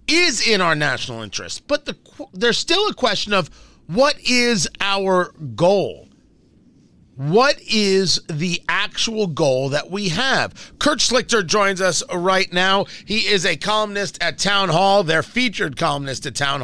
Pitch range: 175-235 Hz